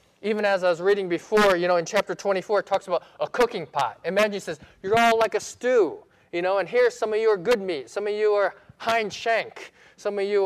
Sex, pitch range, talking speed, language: male, 135-195 Hz, 250 wpm, English